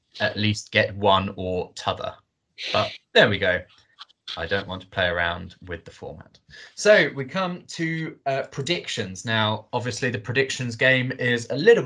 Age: 20-39